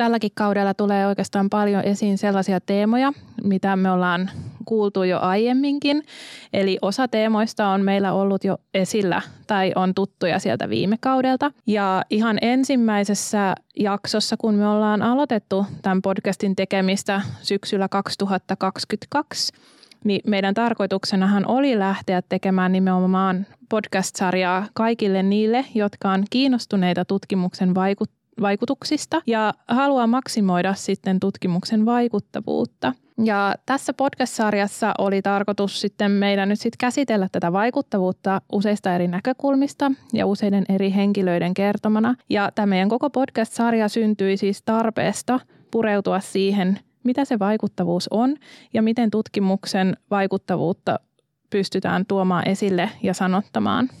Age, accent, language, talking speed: 20-39, native, Finnish, 115 wpm